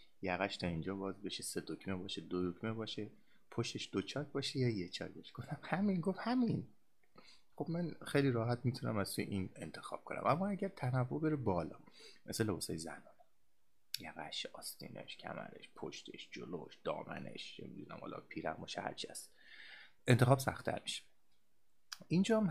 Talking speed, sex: 150 wpm, male